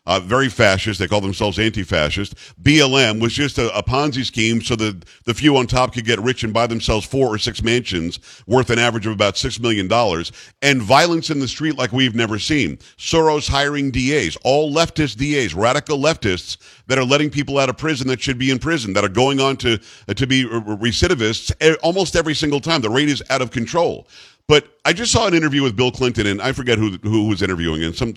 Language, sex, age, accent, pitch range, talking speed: English, male, 50-69, American, 115-150 Hz, 220 wpm